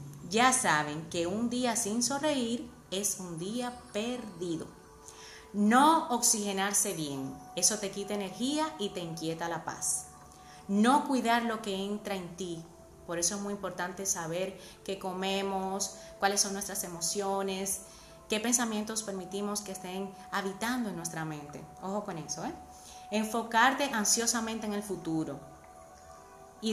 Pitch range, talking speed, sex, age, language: 175-230 Hz, 135 wpm, female, 30-49, Spanish